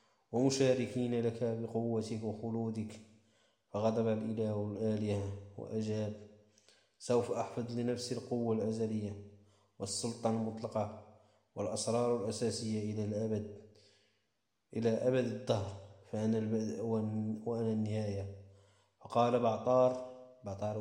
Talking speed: 85 wpm